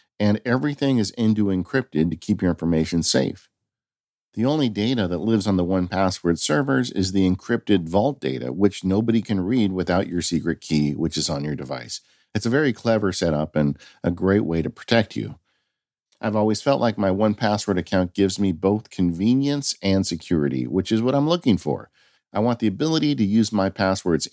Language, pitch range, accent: English, 85-110 Hz, American